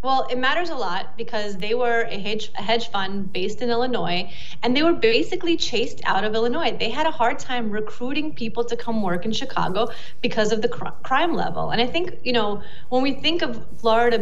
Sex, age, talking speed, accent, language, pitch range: female, 30-49, 210 wpm, American, English, 200-250 Hz